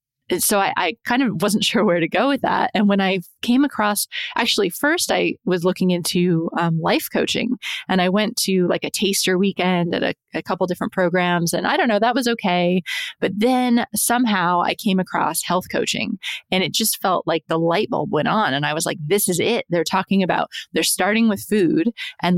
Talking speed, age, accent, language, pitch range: 215 wpm, 20-39, American, English, 170-215 Hz